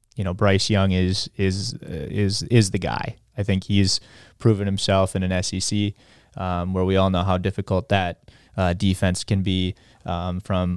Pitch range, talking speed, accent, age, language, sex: 95-105 Hz, 180 wpm, American, 20-39, English, male